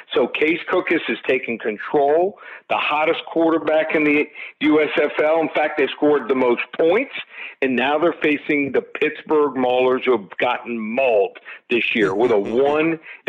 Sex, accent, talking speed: male, American, 160 wpm